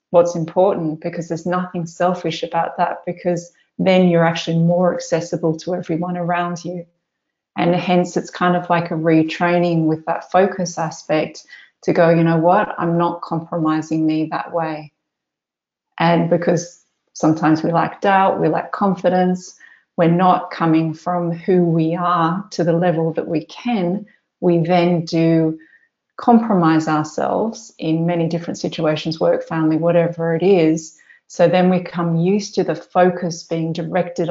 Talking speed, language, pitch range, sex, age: 150 wpm, English, 165-180 Hz, female, 30-49